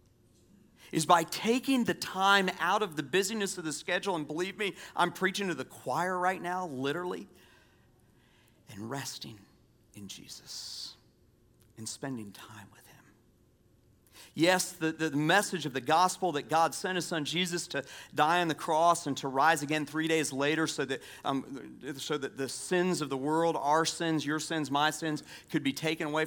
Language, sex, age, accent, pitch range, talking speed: English, male, 40-59, American, 130-160 Hz, 175 wpm